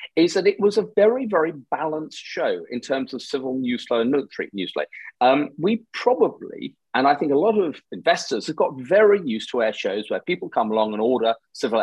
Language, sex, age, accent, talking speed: English, male, 40-59, British, 220 wpm